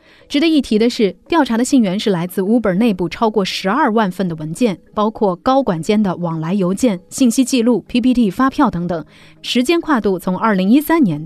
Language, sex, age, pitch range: Chinese, female, 30-49, 180-250 Hz